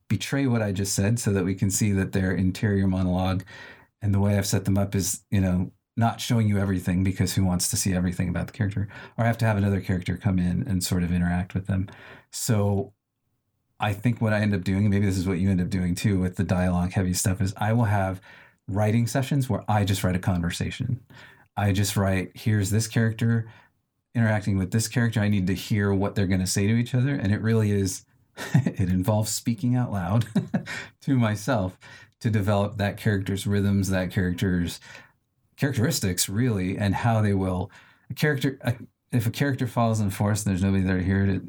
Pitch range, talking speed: 95-115 Hz, 215 wpm